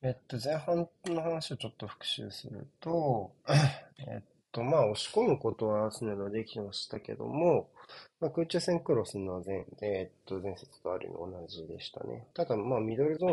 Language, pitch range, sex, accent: Japanese, 105-155 Hz, male, native